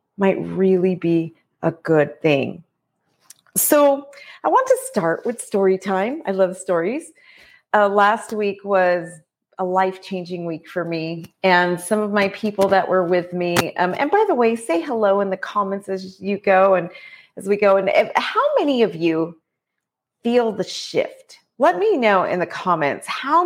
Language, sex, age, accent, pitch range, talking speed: English, female, 30-49, American, 180-230 Hz, 170 wpm